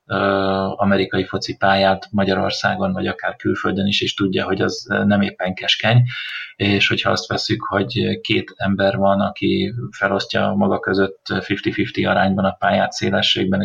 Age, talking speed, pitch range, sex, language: 30-49, 145 wpm, 95-110 Hz, male, Hungarian